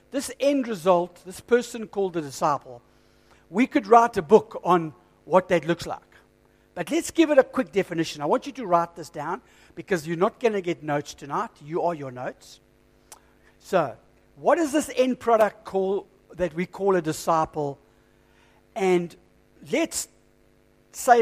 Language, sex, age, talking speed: English, male, 60-79, 165 wpm